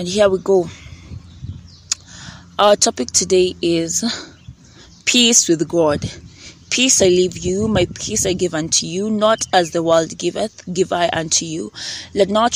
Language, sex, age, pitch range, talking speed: English, female, 20-39, 165-200 Hz, 155 wpm